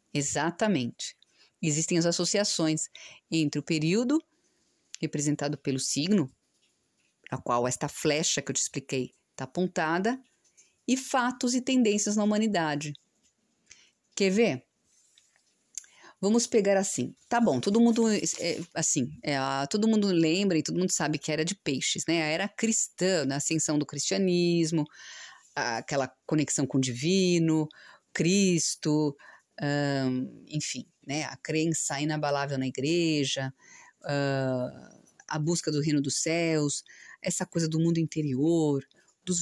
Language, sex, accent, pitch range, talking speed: Portuguese, female, Brazilian, 150-200 Hz, 125 wpm